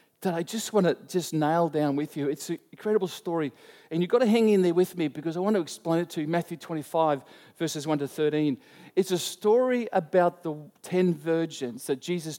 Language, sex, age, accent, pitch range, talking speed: English, male, 40-59, Australian, 155-200 Hz, 225 wpm